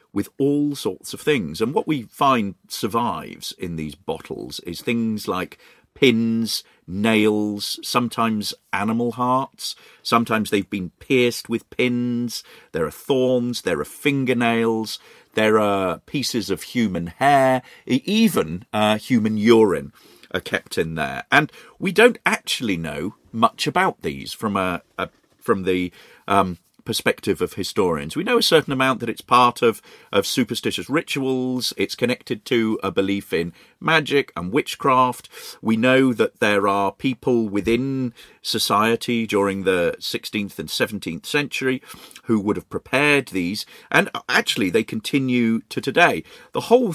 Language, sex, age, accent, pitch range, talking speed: English, male, 40-59, British, 100-130 Hz, 145 wpm